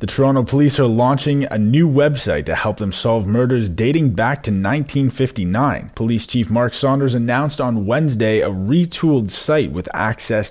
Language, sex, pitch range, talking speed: English, male, 105-140 Hz, 165 wpm